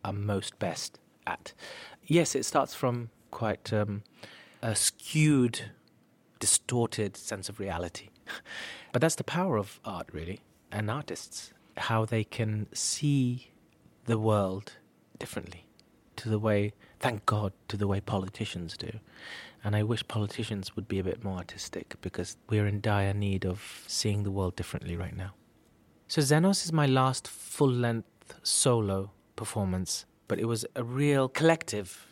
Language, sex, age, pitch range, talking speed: English, male, 40-59, 100-120 Hz, 150 wpm